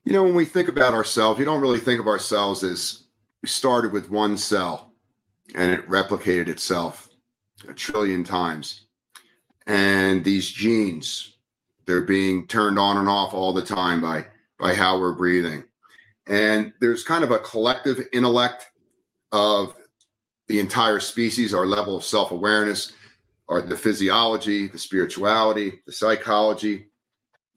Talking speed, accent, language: 140 wpm, American, English